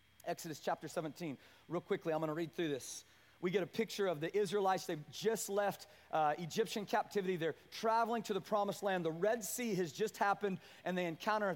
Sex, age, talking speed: male, 30-49, 205 wpm